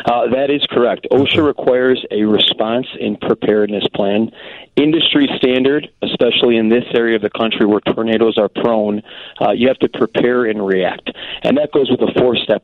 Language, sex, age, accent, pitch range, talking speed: English, male, 40-59, American, 100-115 Hz, 175 wpm